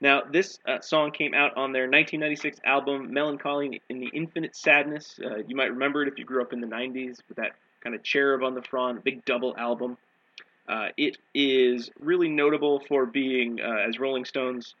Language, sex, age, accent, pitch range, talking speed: English, male, 30-49, American, 120-145 Hz, 200 wpm